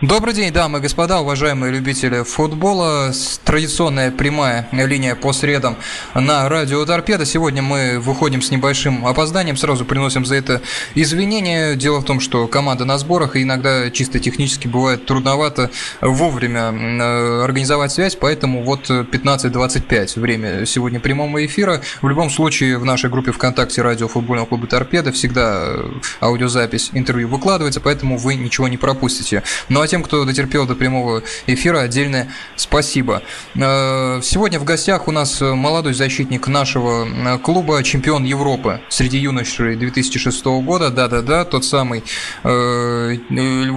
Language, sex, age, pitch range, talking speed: Russian, male, 20-39, 125-145 Hz, 135 wpm